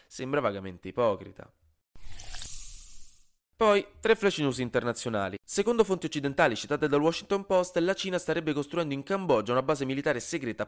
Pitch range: 105-155 Hz